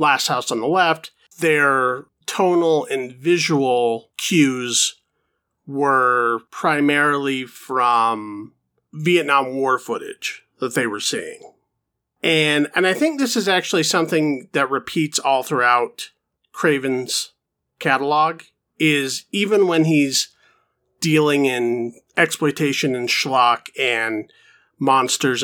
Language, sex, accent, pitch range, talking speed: English, male, American, 130-165 Hz, 105 wpm